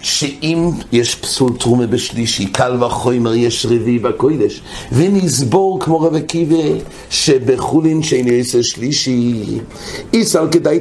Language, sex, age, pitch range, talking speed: English, male, 60-79, 120-155 Hz, 115 wpm